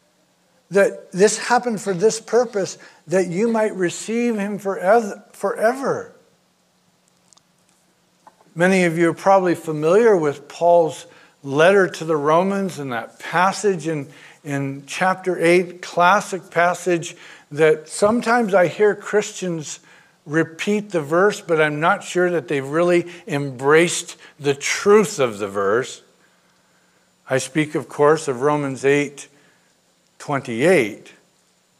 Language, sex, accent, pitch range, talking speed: English, male, American, 150-195 Hz, 115 wpm